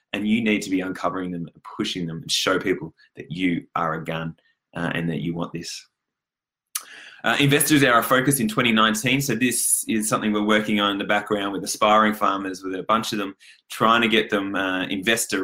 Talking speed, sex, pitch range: 210 wpm, male, 90-105 Hz